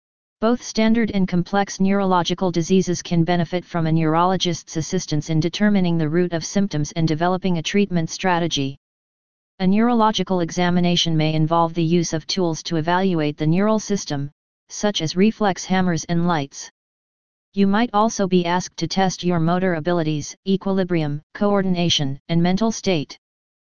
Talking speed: 145 wpm